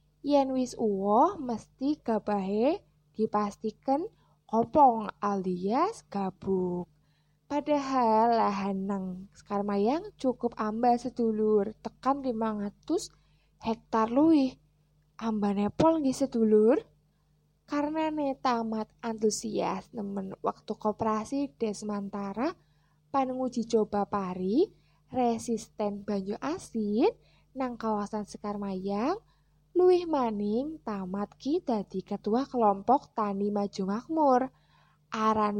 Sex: female